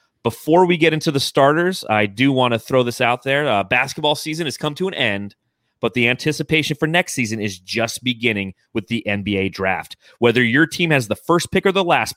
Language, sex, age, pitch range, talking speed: English, male, 30-49, 115-150 Hz, 220 wpm